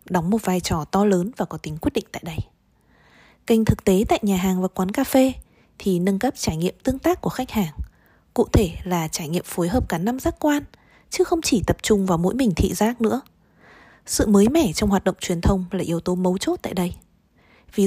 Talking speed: 240 wpm